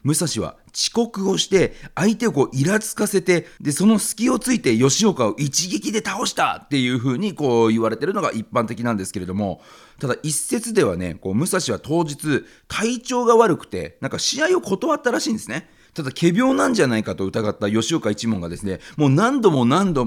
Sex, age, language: male, 40-59, Japanese